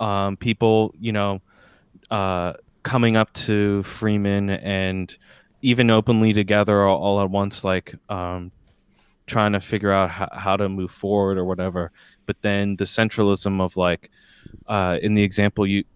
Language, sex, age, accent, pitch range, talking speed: English, male, 20-39, American, 95-115 Hz, 150 wpm